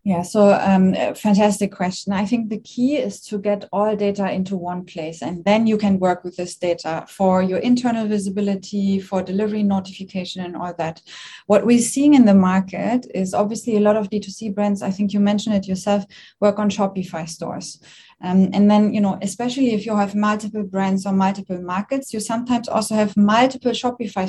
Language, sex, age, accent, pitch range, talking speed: English, female, 20-39, German, 190-220 Hz, 195 wpm